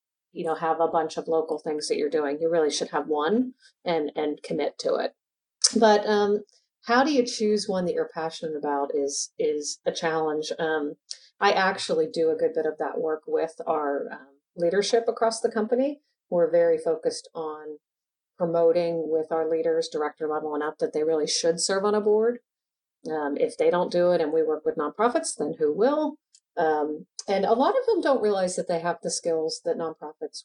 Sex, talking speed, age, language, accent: female, 200 wpm, 40-59, English, American